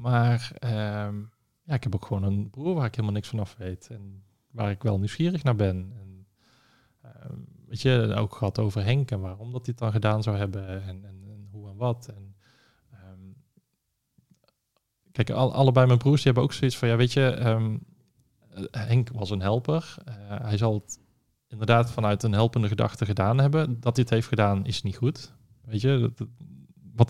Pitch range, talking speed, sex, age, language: 100-125 Hz, 195 wpm, male, 20-39, Dutch